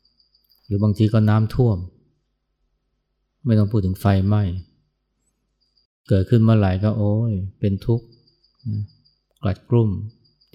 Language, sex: Thai, male